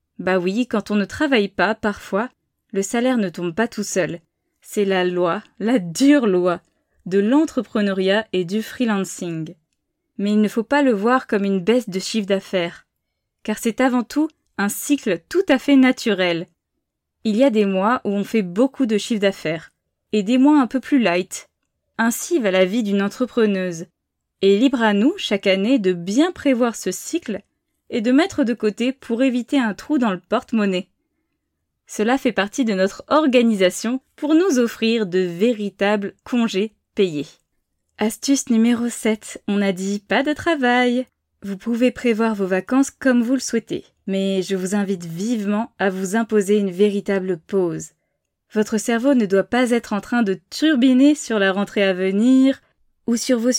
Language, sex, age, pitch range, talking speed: French, female, 20-39, 195-255 Hz, 175 wpm